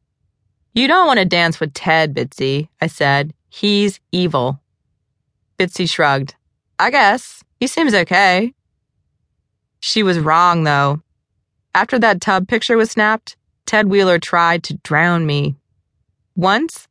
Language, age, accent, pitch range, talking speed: English, 20-39, American, 155-200 Hz, 130 wpm